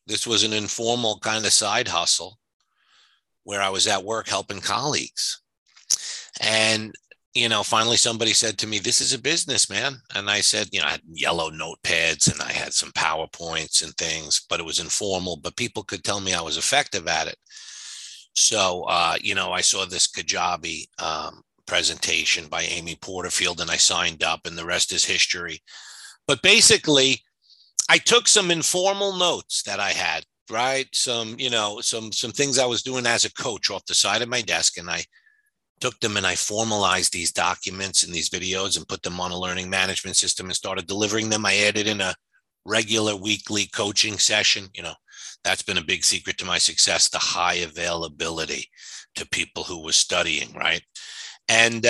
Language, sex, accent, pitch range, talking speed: English, male, American, 95-135 Hz, 185 wpm